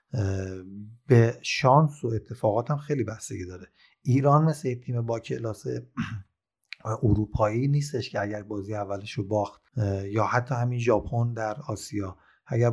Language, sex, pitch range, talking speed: Persian, male, 110-135 Hz, 130 wpm